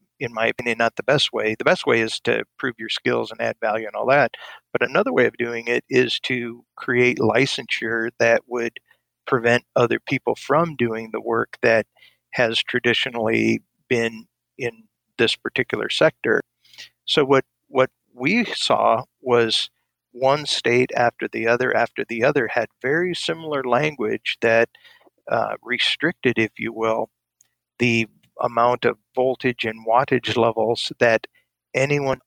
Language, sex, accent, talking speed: English, male, American, 150 wpm